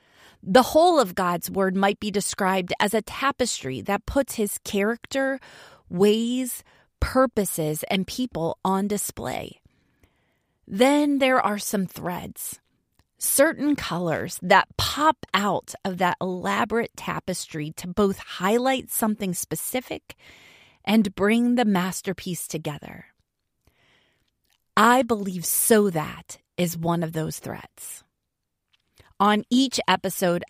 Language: English